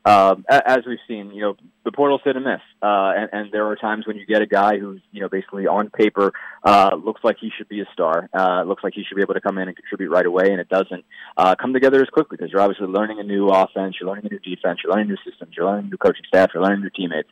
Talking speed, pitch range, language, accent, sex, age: 290 wpm, 95-115 Hz, English, American, male, 20-39